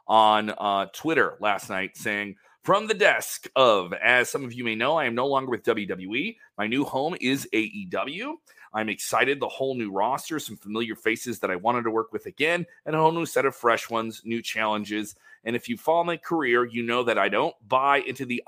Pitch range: 110-150 Hz